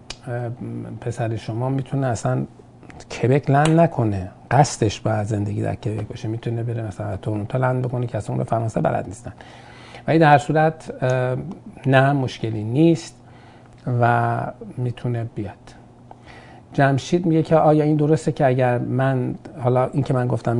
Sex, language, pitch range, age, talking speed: male, Persian, 115-130 Hz, 50-69, 135 wpm